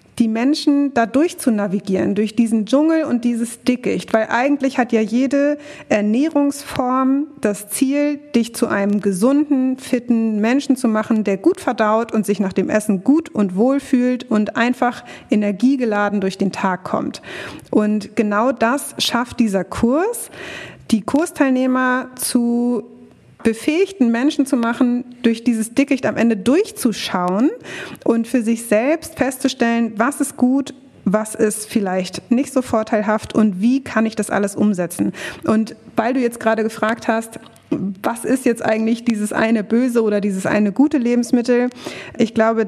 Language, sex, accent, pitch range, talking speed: German, female, German, 210-255 Hz, 150 wpm